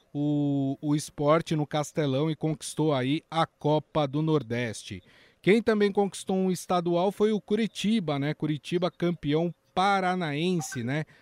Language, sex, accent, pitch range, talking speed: Portuguese, male, Brazilian, 140-180 Hz, 135 wpm